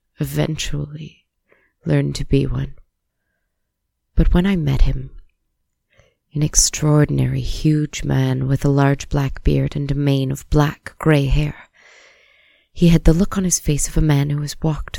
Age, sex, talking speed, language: 20-39, female, 155 wpm, English